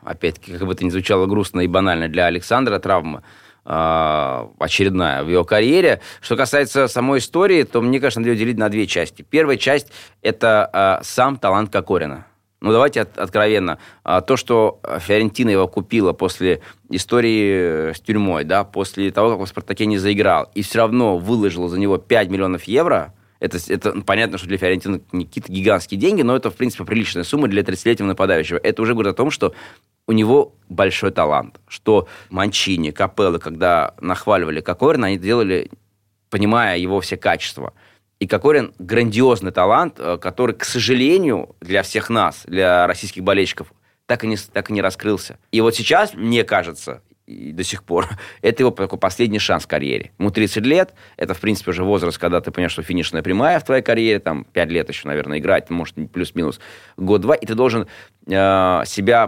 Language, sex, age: Russian, male, 20-39